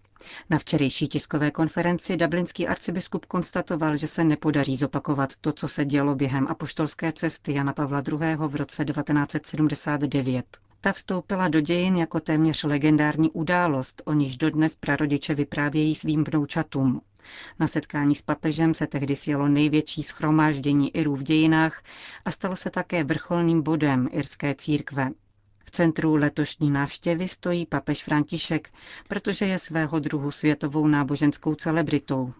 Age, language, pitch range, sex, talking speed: 40-59, Czech, 145-165 Hz, female, 135 wpm